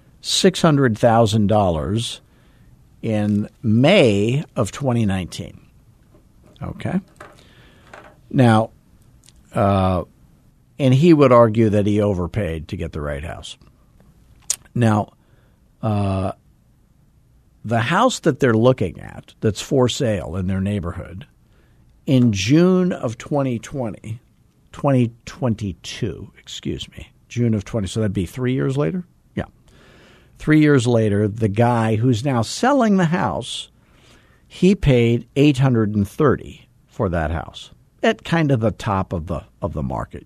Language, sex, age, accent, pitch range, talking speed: English, male, 50-69, American, 100-130 Hz, 115 wpm